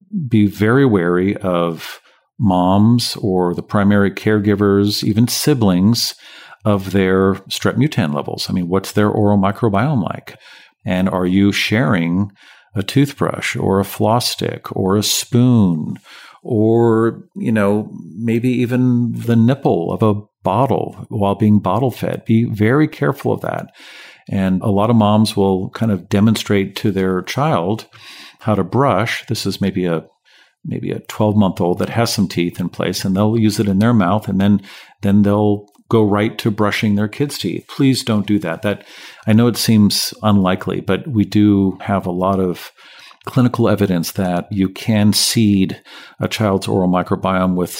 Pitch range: 95-115 Hz